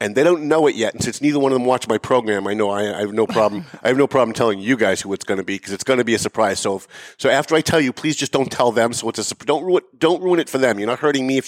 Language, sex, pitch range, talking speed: English, male, 105-135 Hz, 355 wpm